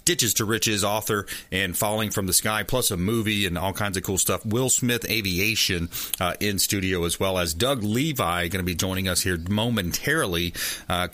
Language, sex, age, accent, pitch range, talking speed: English, male, 30-49, American, 95-125 Hz, 200 wpm